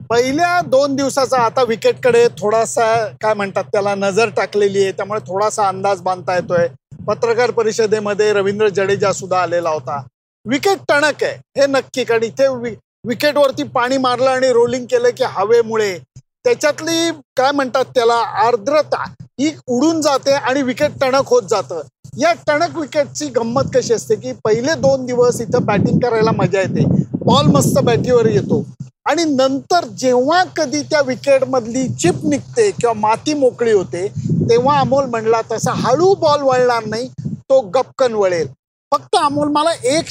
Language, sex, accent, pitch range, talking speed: Marathi, male, native, 205-285 Hz, 155 wpm